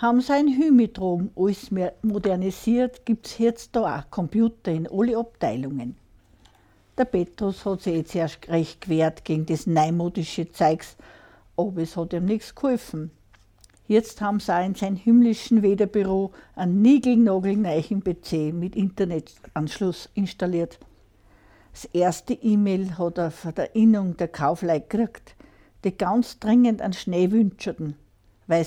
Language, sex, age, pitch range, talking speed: German, female, 60-79, 165-230 Hz, 135 wpm